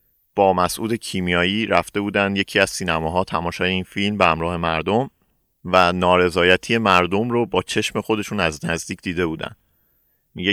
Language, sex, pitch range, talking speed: Persian, male, 85-110 Hz, 155 wpm